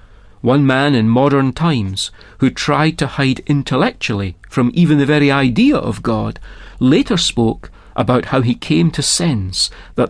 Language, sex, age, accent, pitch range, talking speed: English, male, 40-59, British, 105-155 Hz, 155 wpm